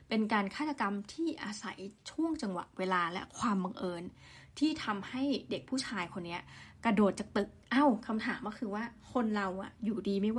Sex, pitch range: female, 195-250 Hz